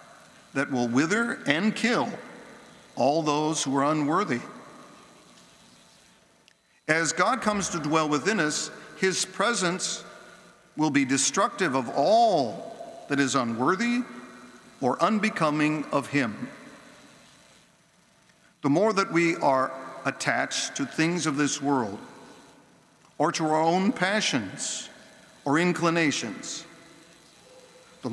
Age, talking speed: 50-69, 105 wpm